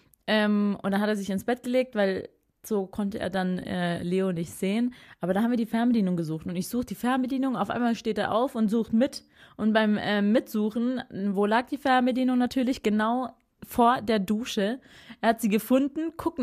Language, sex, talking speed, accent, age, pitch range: German, female, 205 wpm, German, 30-49, 205-290 Hz